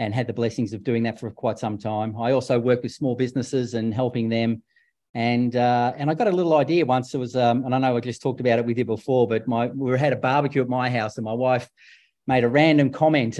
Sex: male